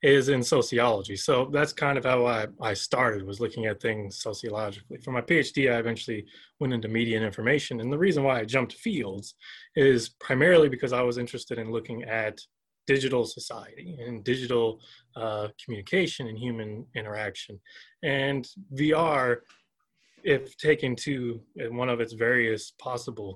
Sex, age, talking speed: male, 20-39, 155 wpm